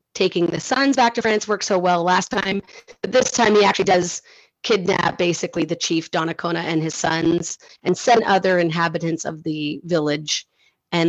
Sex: female